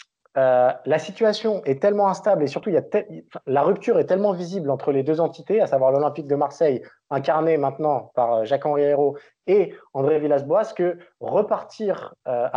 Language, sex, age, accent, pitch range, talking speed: French, male, 20-39, French, 130-155 Hz, 170 wpm